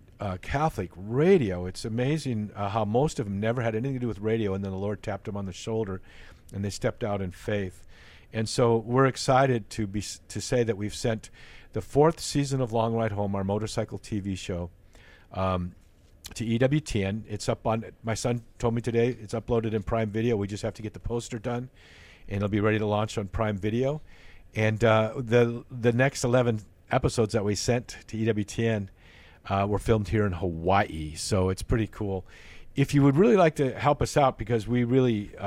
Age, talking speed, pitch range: 50-69, 205 wpm, 100-120 Hz